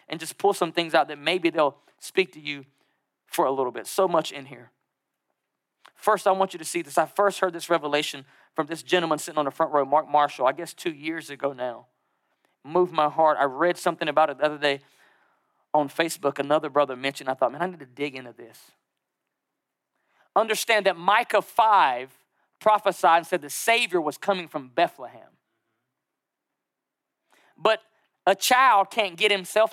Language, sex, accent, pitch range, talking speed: English, male, American, 155-210 Hz, 185 wpm